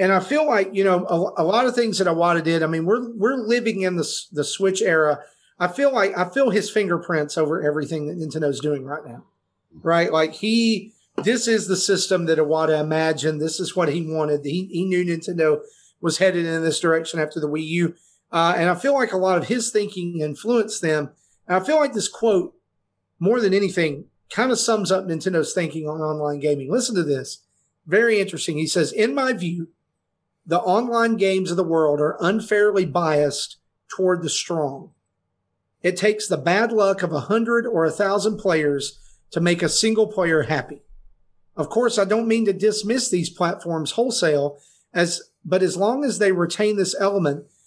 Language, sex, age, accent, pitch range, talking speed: English, male, 40-59, American, 155-205 Hz, 195 wpm